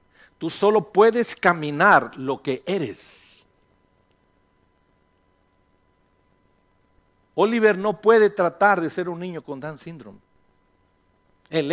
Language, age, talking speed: English, 50-69, 95 wpm